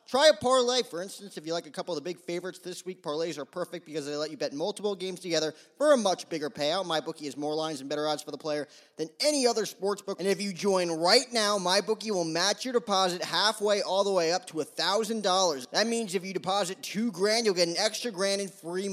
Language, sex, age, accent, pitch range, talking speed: English, male, 20-39, American, 160-215 Hz, 245 wpm